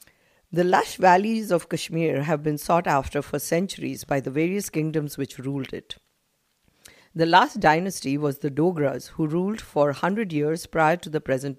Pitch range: 145-180 Hz